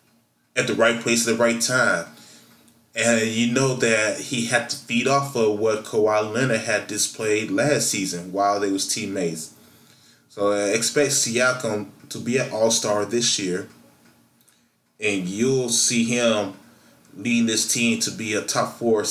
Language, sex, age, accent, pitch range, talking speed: English, male, 20-39, American, 110-120 Hz, 160 wpm